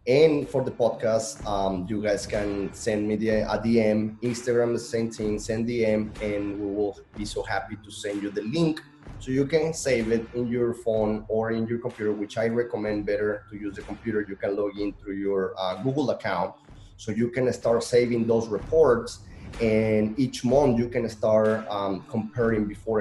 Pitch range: 100-120 Hz